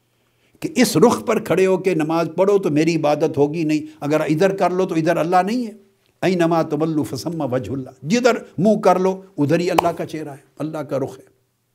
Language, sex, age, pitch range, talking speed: Urdu, male, 60-79, 145-195 Hz, 220 wpm